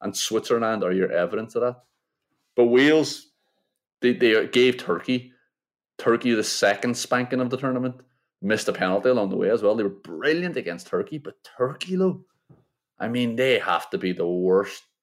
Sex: male